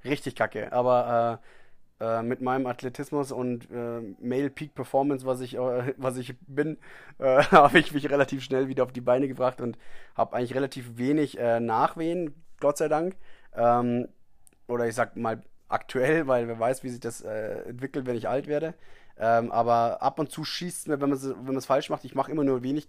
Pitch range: 120-140 Hz